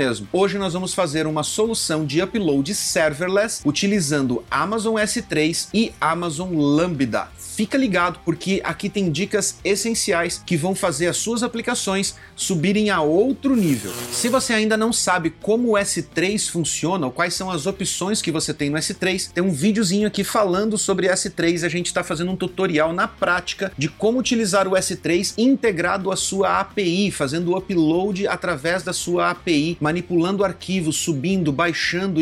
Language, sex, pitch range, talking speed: Portuguese, male, 175-210 Hz, 160 wpm